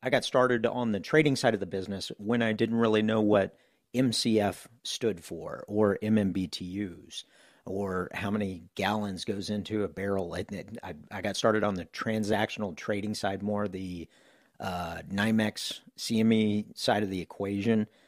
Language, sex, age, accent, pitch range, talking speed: English, male, 40-59, American, 95-110 Hz, 155 wpm